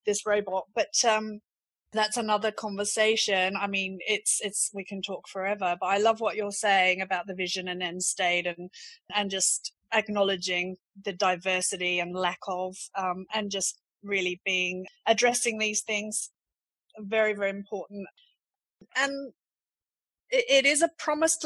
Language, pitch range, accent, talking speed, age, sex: English, 200-255 Hz, British, 150 wpm, 30-49, female